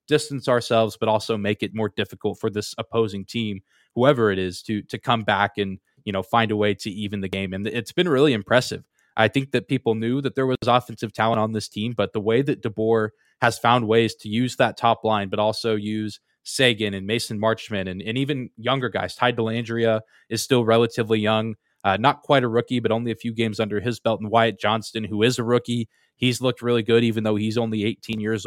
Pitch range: 105-120 Hz